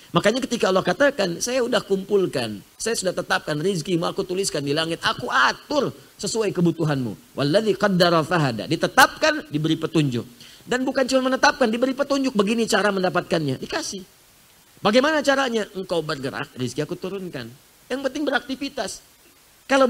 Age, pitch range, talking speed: 40-59, 155-225 Hz, 140 wpm